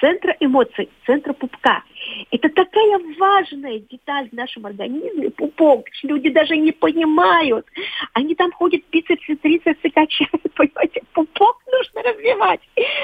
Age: 40-59